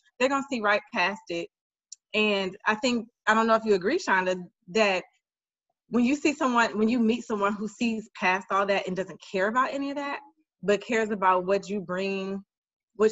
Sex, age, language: female, 20-39, English